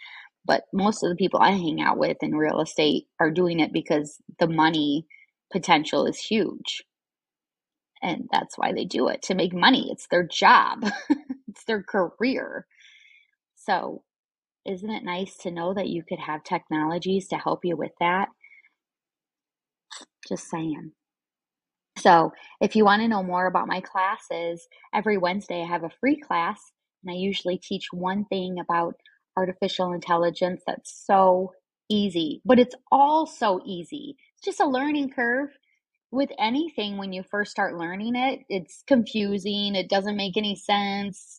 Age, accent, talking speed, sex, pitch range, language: 20-39, American, 155 wpm, female, 175-235 Hz, English